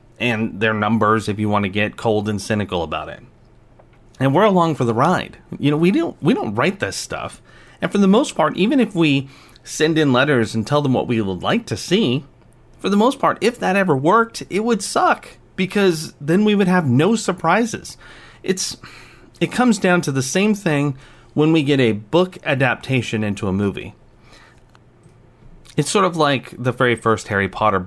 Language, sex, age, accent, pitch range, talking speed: English, male, 30-49, American, 110-150 Hz, 200 wpm